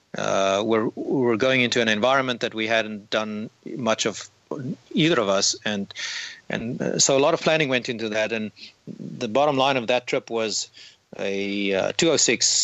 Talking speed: 185 wpm